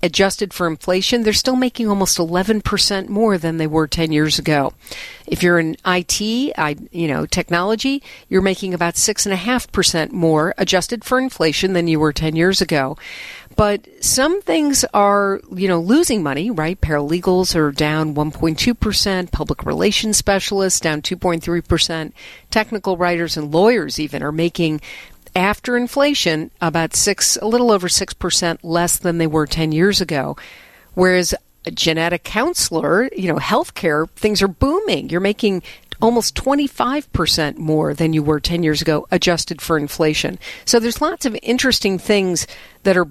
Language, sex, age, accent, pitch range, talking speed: English, female, 50-69, American, 165-215 Hz, 150 wpm